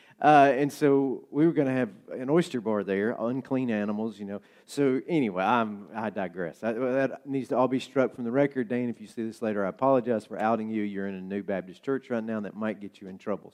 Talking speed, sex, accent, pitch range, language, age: 240 wpm, male, American, 110-140 Hz, English, 40-59